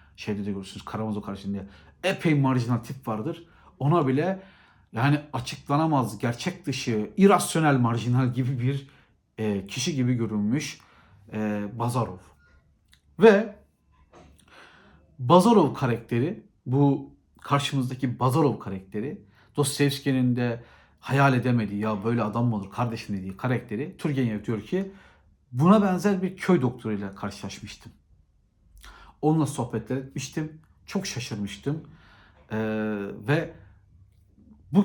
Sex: male